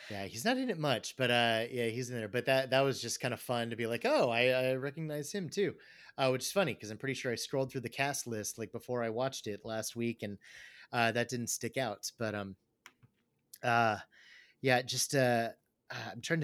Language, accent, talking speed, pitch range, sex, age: English, American, 235 wpm, 110-130 Hz, male, 30-49